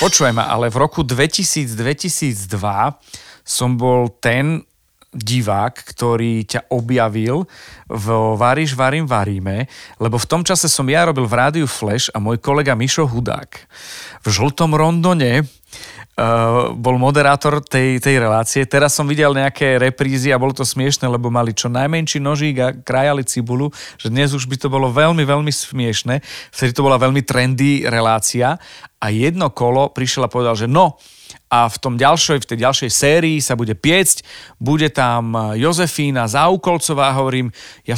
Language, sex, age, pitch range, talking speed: Slovak, male, 40-59, 120-150 Hz, 155 wpm